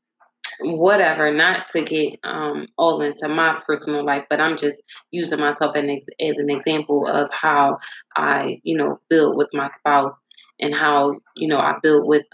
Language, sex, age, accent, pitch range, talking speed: English, female, 20-39, American, 145-160 Hz, 165 wpm